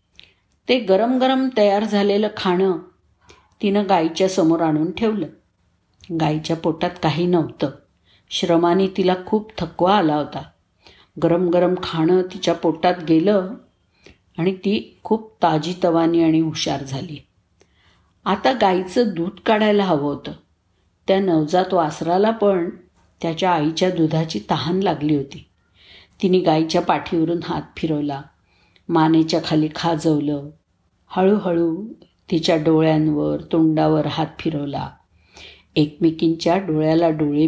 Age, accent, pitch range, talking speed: 50-69, native, 150-185 Hz, 110 wpm